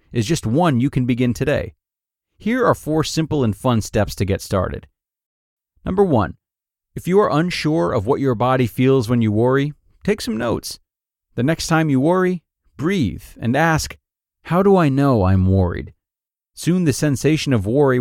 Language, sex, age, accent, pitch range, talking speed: English, male, 30-49, American, 100-150 Hz, 175 wpm